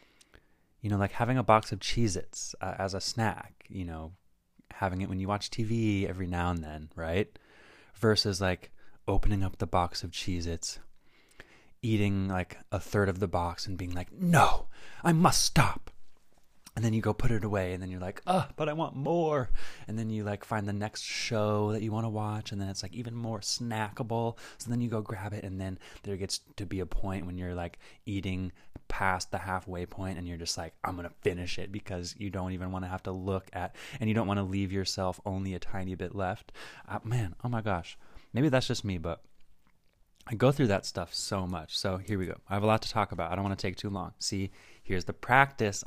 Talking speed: 225 wpm